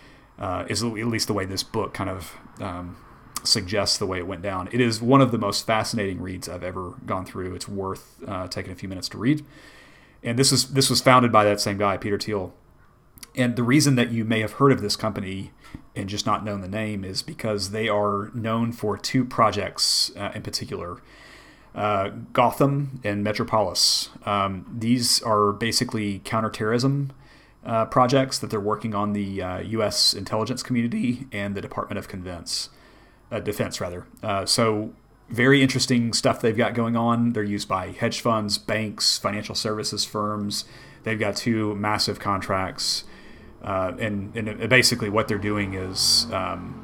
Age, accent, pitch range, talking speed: 30-49, American, 100-120 Hz, 175 wpm